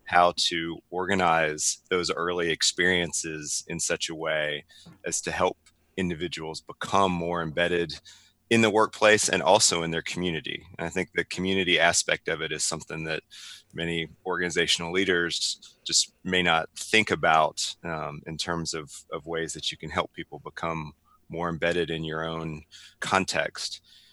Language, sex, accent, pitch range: English, male, American, 80-95 Hz